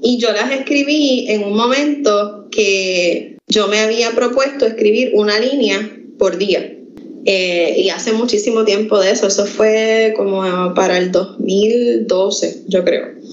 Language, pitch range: Spanish, 210-270 Hz